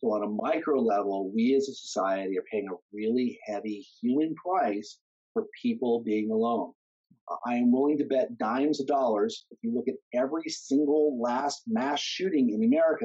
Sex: male